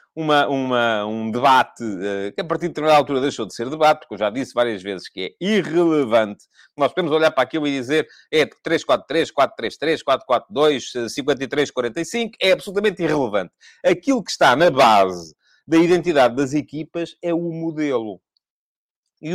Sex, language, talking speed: male, English, 175 wpm